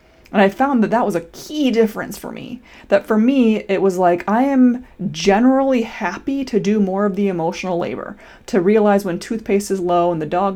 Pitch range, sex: 175-225 Hz, female